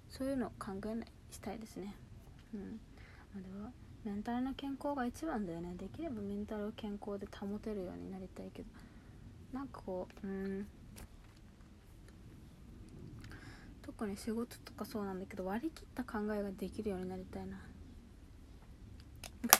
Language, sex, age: Japanese, female, 20-39